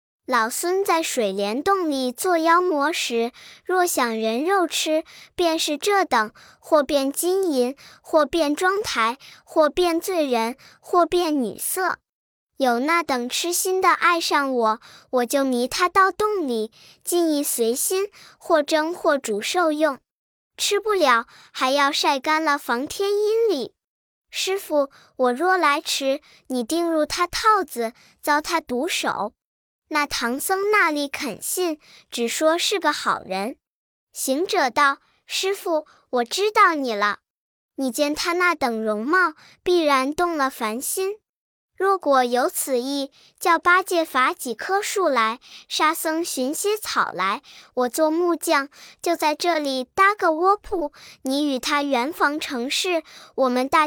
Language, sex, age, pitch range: Chinese, male, 10-29, 260-355 Hz